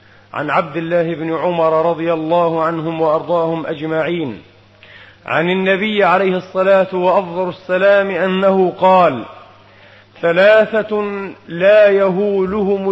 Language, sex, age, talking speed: Arabic, male, 40-59, 100 wpm